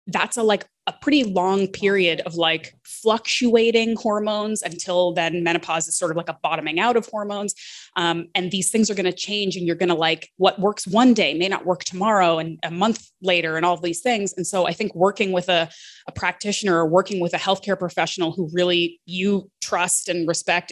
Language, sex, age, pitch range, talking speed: English, female, 20-39, 175-215 Hz, 210 wpm